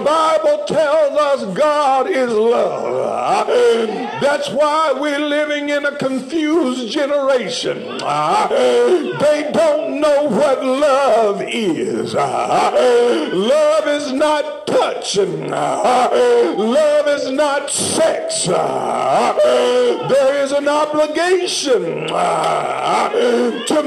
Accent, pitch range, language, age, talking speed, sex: American, 285-320 Hz, English, 60-79, 85 wpm, male